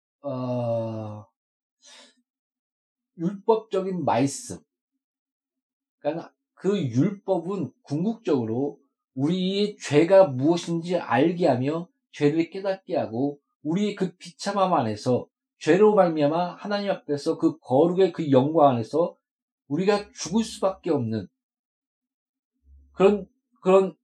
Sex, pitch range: male, 145-240 Hz